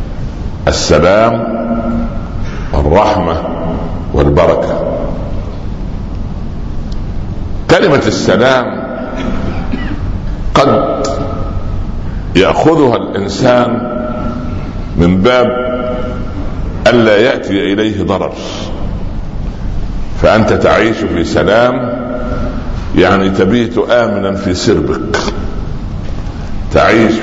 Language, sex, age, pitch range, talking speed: Arabic, male, 60-79, 95-120 Hz, 55 wpm